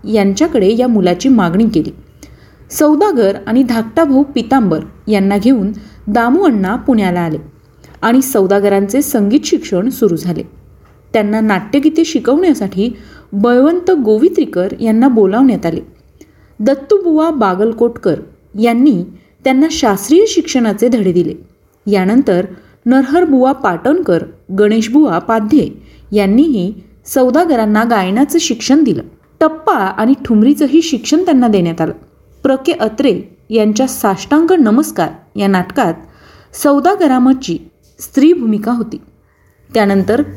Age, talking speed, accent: 30-49, 100 wpm, native